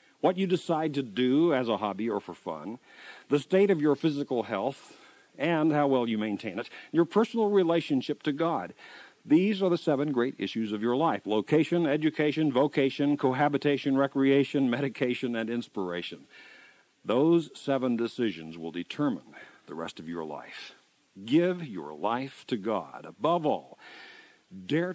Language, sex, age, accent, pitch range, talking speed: English, male, 50-69, American, 115-160 Hz, 150 wpm